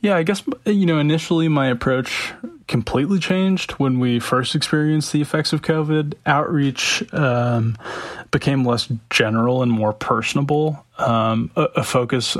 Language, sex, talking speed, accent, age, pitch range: English, male, 145 wpm, American, 20-39, 115-140 Hz